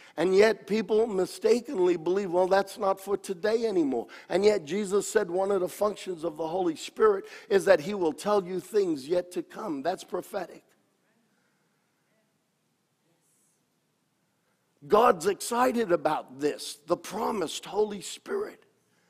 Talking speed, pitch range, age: 135 wpm, 165-225 Hz, 50-69